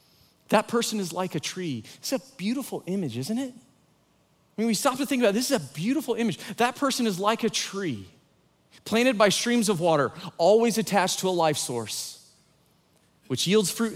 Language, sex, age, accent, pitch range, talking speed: English, male, 30-49, American, 170-230 Hz, 195 wpm